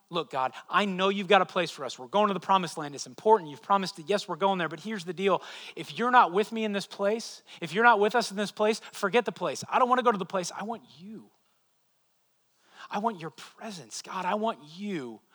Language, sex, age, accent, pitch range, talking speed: English, male, 30-49, American, 150-205 Hz, 260 wpm